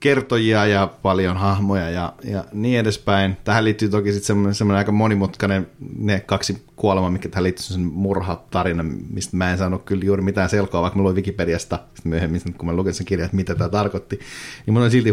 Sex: male